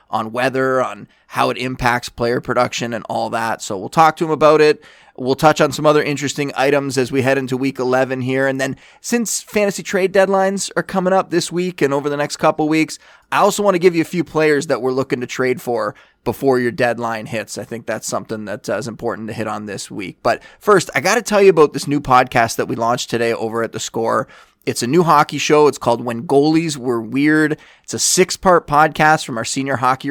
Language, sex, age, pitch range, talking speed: English, male, 20-39, 125-155 Hz, 235 wpm